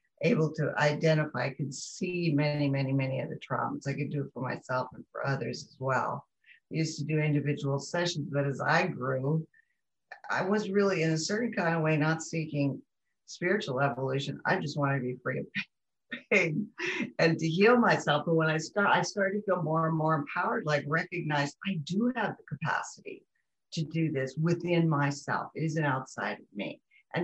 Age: 50-69